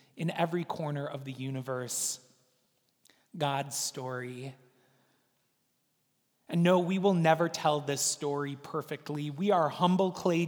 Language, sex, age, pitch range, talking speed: English, male, 30-49, 135-170 Hz, 120 wpm